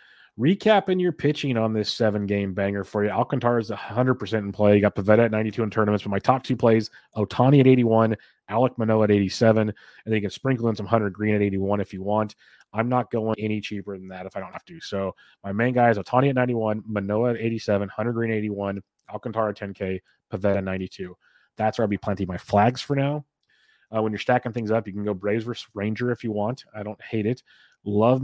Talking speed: 230 wpm